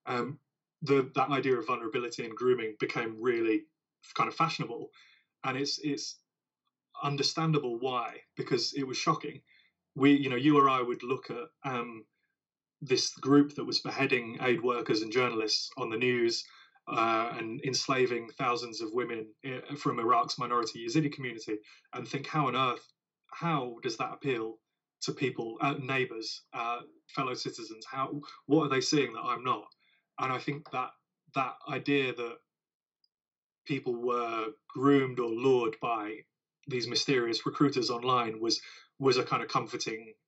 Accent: British